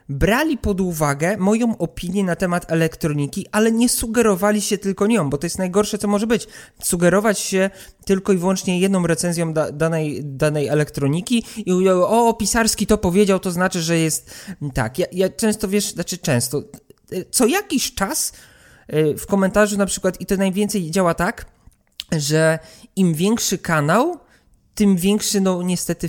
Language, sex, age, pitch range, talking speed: Polish, male, 20-39, 160-205 Hz, 155 wpm